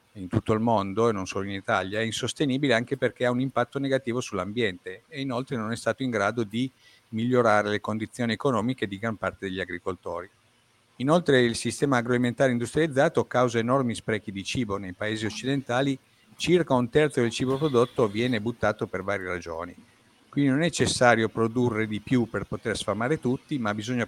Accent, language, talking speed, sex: native, Italian, 180 wpm, male